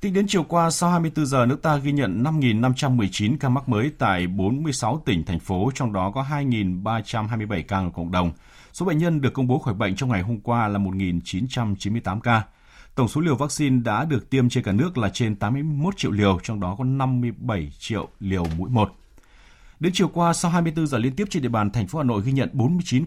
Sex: male